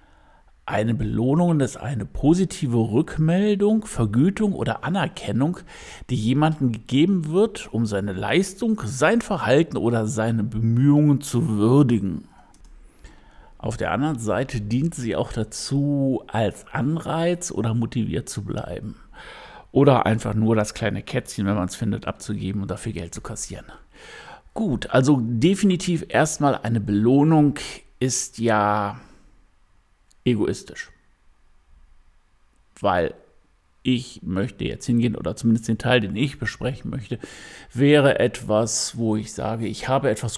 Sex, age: male, 60-79